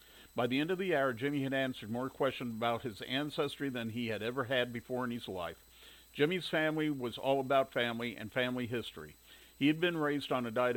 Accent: American